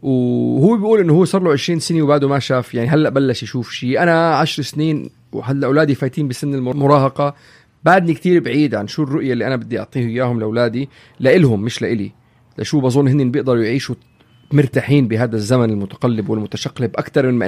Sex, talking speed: male, 180 wpm